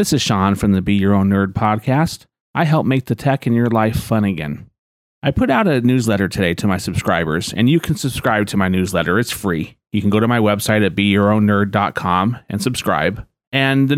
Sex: male